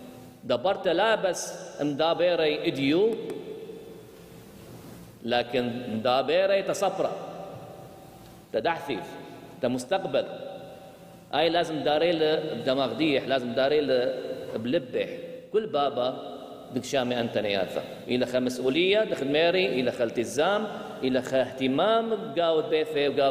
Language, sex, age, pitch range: English, male, 40-59, 130-190 Hz